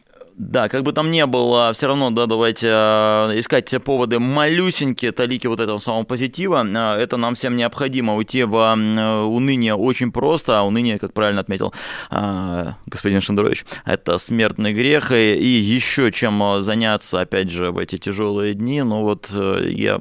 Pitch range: 95-120 Hz